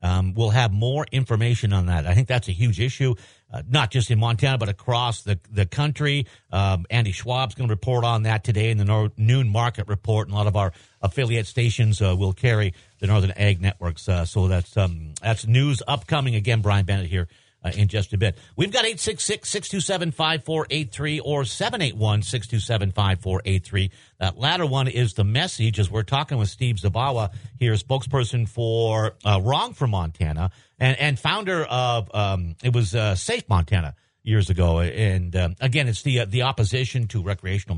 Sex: male